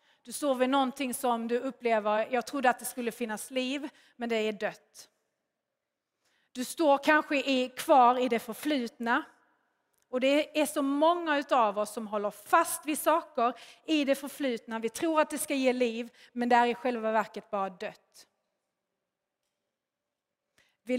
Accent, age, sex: native, 30-49, female